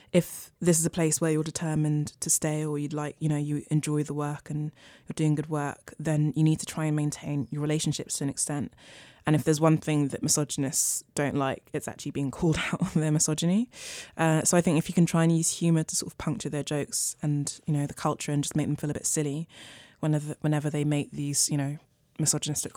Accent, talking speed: British, 240 wpm